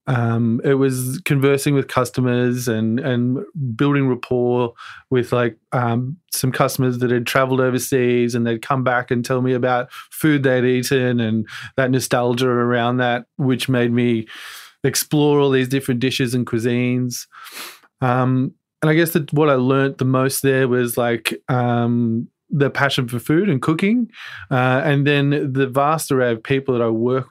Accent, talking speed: Australian, 165 wpm